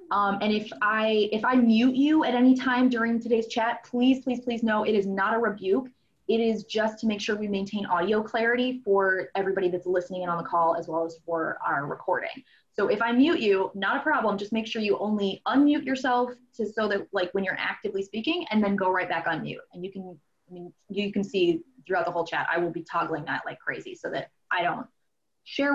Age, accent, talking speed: 20-39, American, 235 wpm